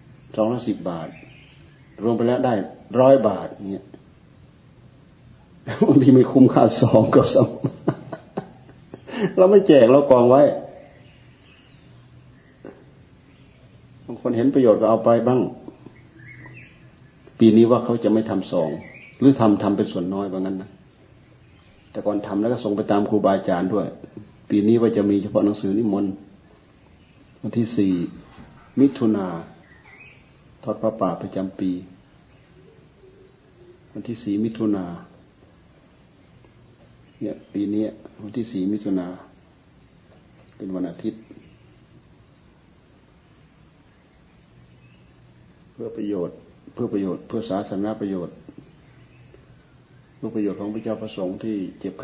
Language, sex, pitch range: Thai, male, 95-120 Hz